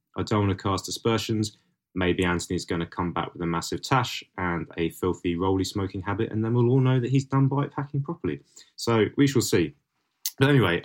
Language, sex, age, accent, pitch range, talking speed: English, male, 20-39, British, 90-115 Hz, 215 wpm